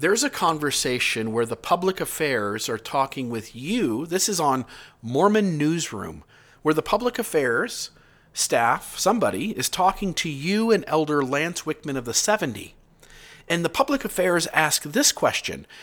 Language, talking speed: English, 150 wpm